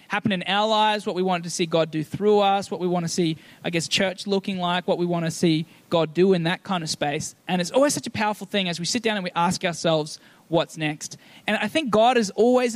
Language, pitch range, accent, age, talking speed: English, 170-220 Hz, Australian, 20-39, 275 wpm